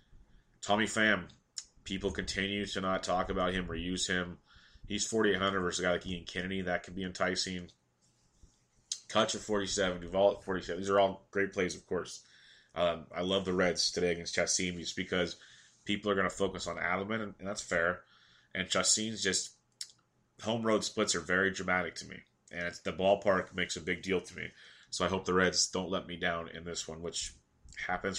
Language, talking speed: English, 195 wpm